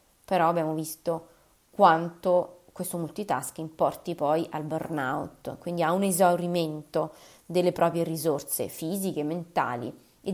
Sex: female